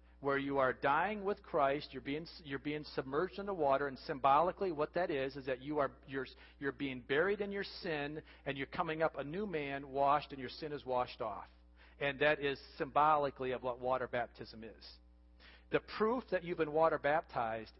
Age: 40-59